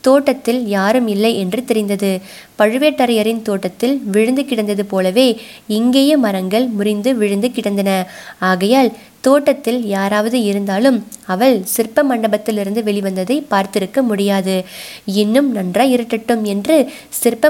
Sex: female